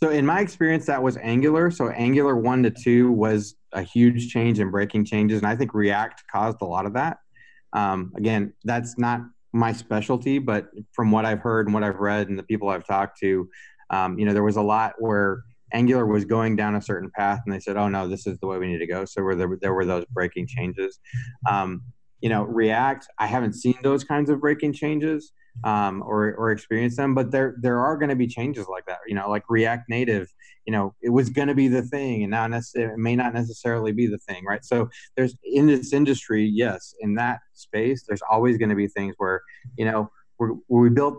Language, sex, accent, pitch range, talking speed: English, male, American, 105-125 Hz, 230 wpm